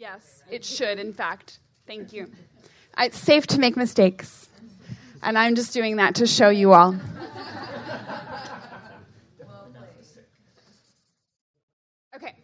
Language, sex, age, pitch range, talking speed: English, female, 20-39, 180-220 Hz, 105 wpm